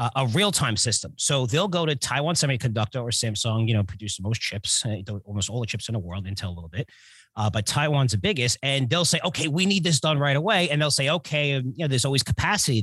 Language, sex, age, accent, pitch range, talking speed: English, male, 30-49, American, 110-150 Hz, 240 wpm